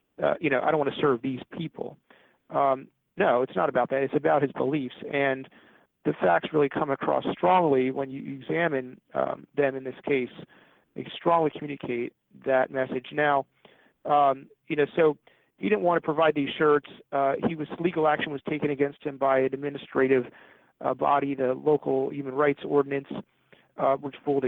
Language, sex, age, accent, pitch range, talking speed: English, male, 40-59, American, 135-150 Hz, 180 wpm